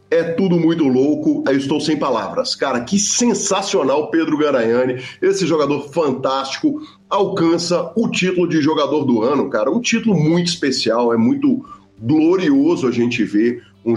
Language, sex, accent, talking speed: Portuguese, male, Brazilian, 155 wpm